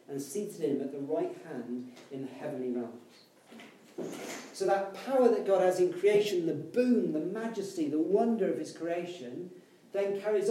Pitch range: 140-215 Hz